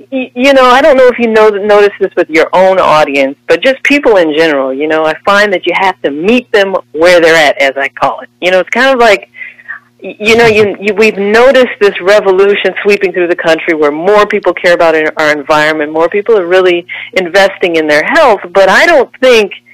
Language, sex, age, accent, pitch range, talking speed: English, female, 40-59, American, 155-210 Hz, 220 wpm